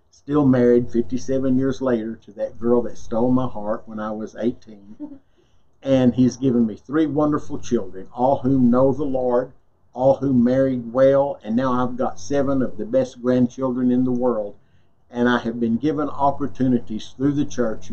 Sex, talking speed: male, 175 wpm